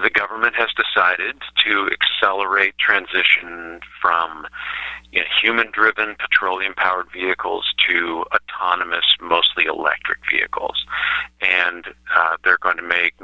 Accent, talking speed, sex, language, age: American, 100 wpm, male, English, 50-69